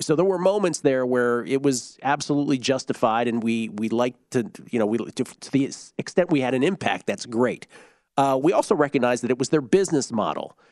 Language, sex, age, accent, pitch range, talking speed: English, male, 40-59, American, 120-155 Hz, 215 wpm